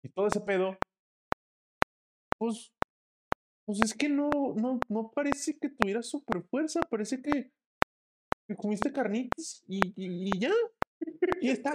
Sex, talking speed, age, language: male, 140 wpm, 20-39, Spanish